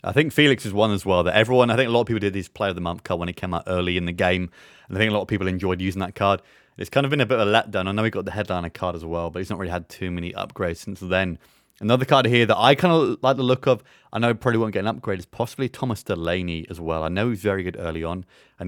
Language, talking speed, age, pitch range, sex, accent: English, 330 wpm, 30-49, 90-110 Hz, male, British